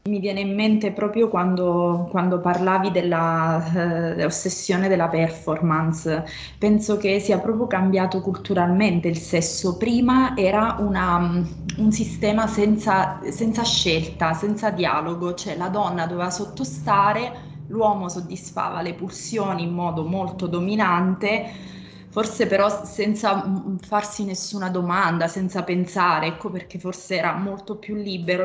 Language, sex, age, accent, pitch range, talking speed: Italian, female, 20-39, native, 175-210 Hz, 120 wpm